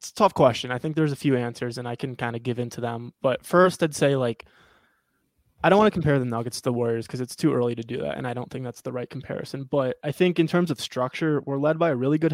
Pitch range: 125-150 Hz